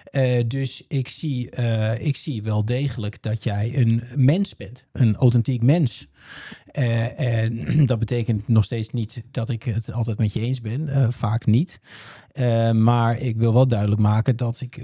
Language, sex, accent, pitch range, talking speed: Dutch, male, Dutch, 110-130 Hz, 170 wpm